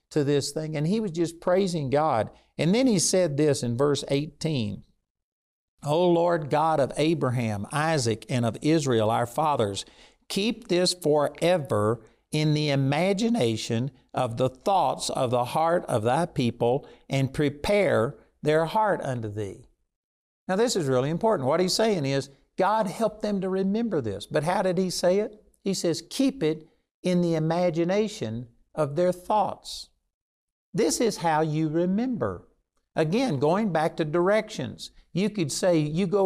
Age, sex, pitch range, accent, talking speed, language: 60-79, male, 135-185 Hz, American, 155 wpm, English